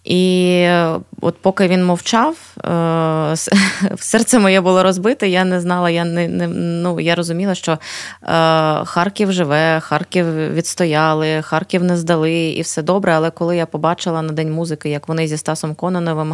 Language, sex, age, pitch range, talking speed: Ukrainian, female, 20-39, 155-185 Hz, 150 wpm